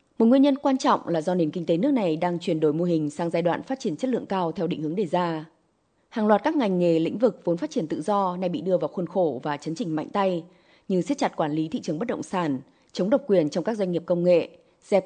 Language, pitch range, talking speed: Vietnamese, 170-230 Hz, 290 wpm